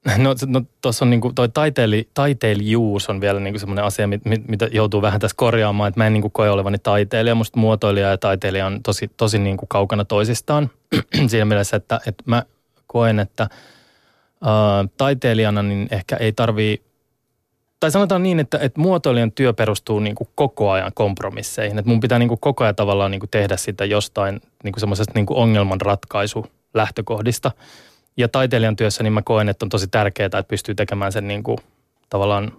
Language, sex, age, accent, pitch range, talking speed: Finnish, male, 20-39, native, 105-120 Hz, 175 wpm